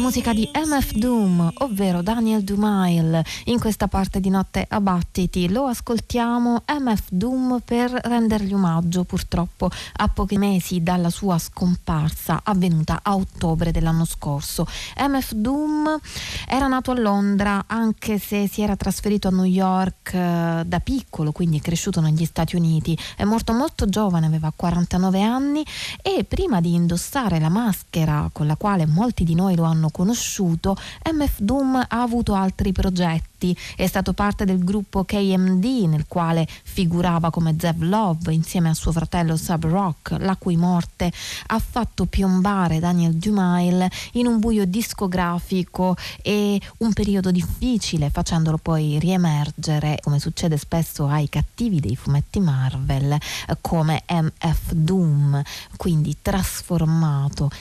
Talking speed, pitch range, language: 135 wpm, 160-205 Hz, Italian